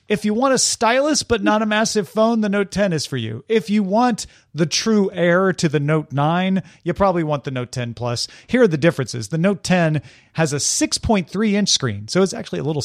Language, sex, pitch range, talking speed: English, male, 130-190 Hz, 235 wpm